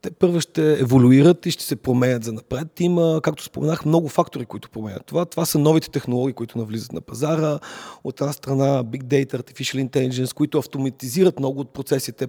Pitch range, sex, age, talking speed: 135-165 Hz, male, 40-59, 185 wpm